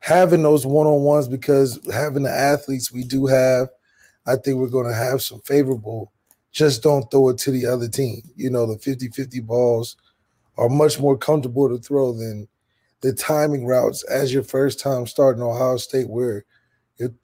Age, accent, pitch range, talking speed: 20-39, American, 125-145 Hz, 175 wpm